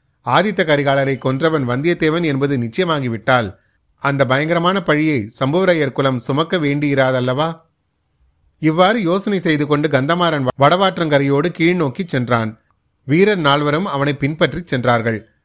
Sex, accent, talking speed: male, native, 105 wpm